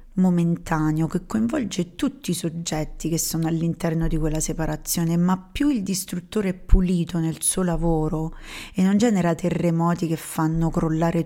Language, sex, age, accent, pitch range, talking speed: Italian, female, 30-49, native, 160-185 Hz, 150 wpm